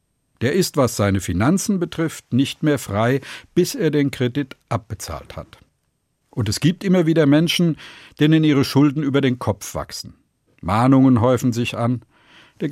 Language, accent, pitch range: German, German, 110-150 Hz